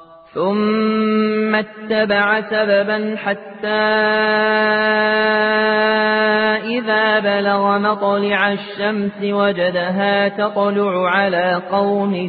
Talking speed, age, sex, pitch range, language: 60 wpm, 30-49, male, 180-205 Hz, Arabic